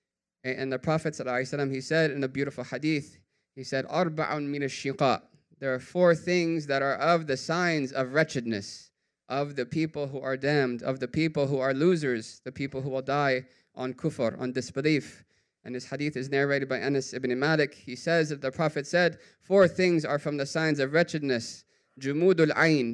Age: 20-39